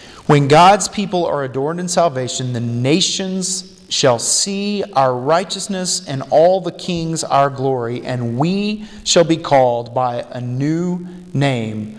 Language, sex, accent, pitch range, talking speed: English, male, American, 125-180 Hz, 140 wpm